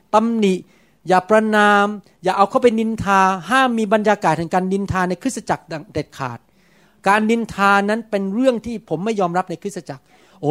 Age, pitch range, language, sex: 30-49, 185-245 Hz, Thai, male